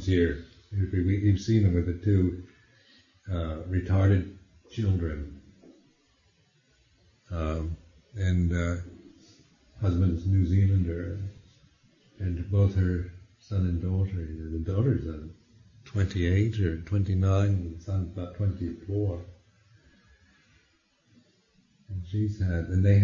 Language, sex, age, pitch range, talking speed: English, male, 60-79, 90-110 Hz, 105 wpm